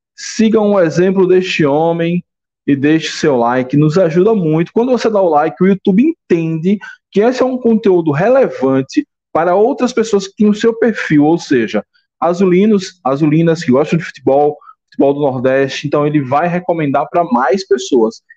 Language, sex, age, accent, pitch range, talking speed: Portuguese, male, 20-39, Brazilian, 145-200 Hz, 170 wpm